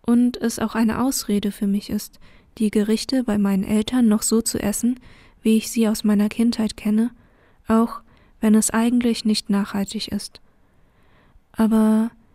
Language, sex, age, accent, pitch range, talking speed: German, female, 20-39, German, 205-230 Hz, 155 wpm